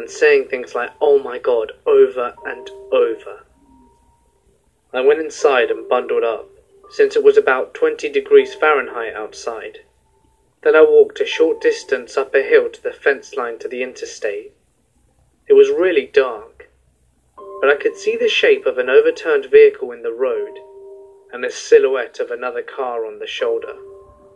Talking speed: 165 wpm